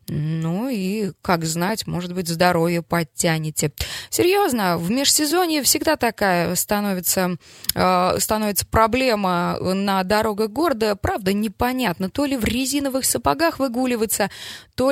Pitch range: 175-225 Hz